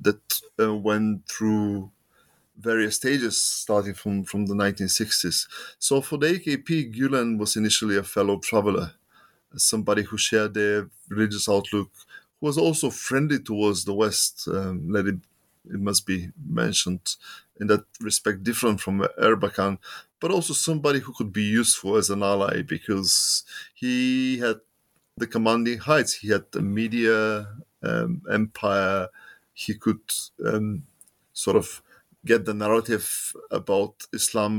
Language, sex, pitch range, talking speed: English, male, 100-130 Hz, 135 wpm